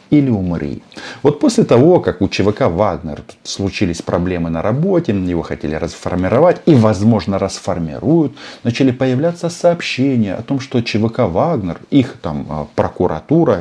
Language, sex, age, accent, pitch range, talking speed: Russian, male, 40-59, native, 85-125 Hz, 130 wpm